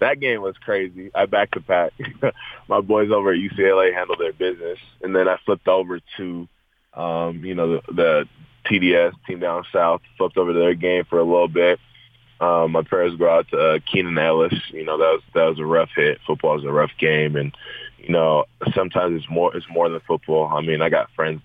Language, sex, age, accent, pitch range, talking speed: English, male, 20-39, American, 80-95 Hz, 220 wpm